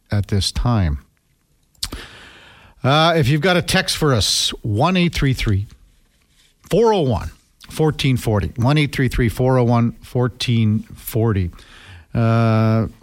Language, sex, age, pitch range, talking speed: English, male, 50-69, 100-130 Hz, 60 wpm